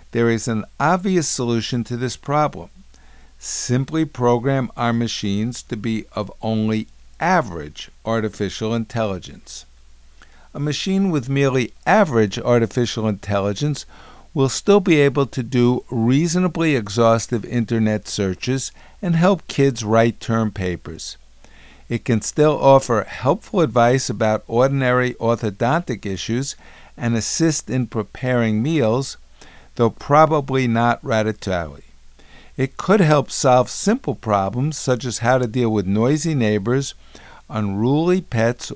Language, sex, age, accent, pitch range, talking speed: English, male, 50-69, American, 110-140 Hz, 120 wpm